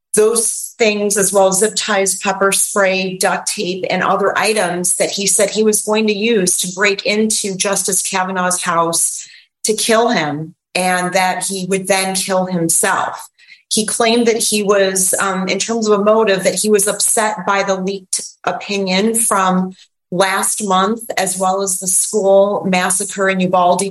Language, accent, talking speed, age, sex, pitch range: English, American, 170 wpm, 30-49, female, 185-215 Hz